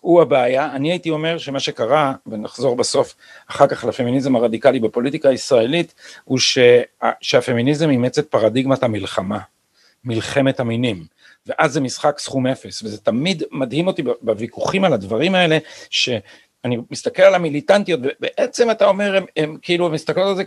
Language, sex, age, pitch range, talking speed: Hebrew, male, 50-69, 135-200 Hz, 150 wpm